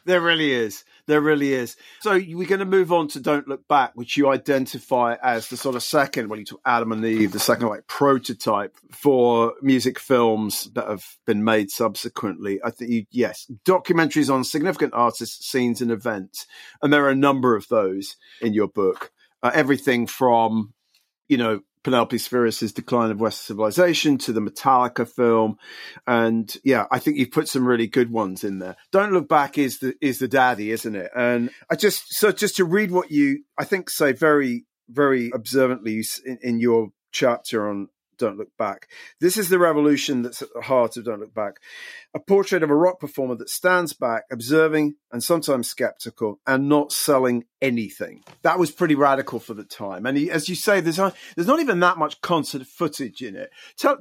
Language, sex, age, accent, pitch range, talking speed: English, male, 40-59, British, 115-165 Hz, 195 wpm